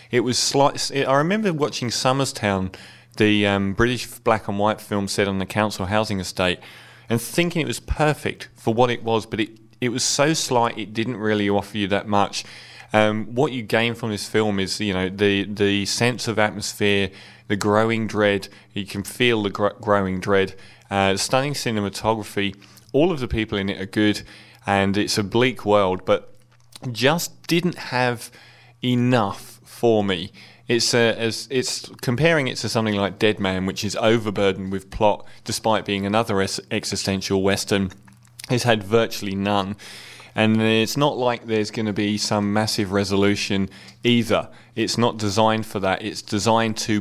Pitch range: 100-120 Hz